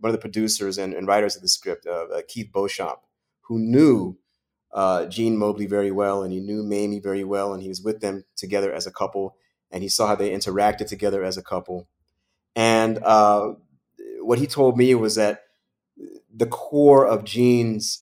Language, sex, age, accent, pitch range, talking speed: English, male, 30-49, American, 100-125 Hz, 190 wpm